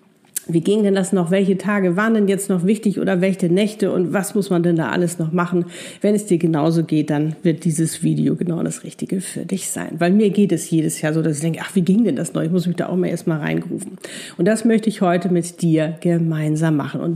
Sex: female